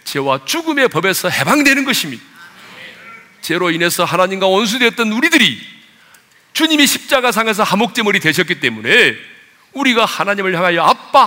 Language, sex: Korean, male